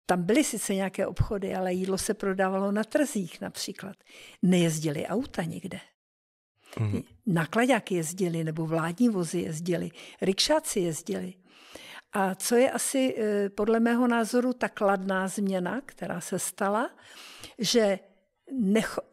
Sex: female